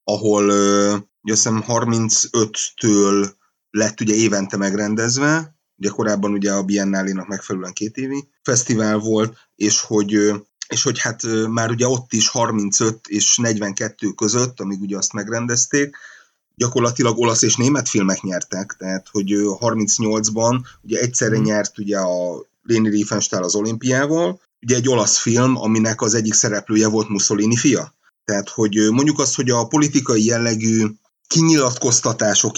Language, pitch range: Hungarian, 105-120 Hz